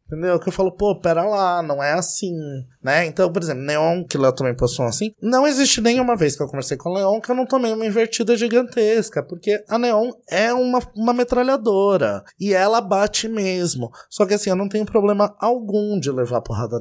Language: Portuguese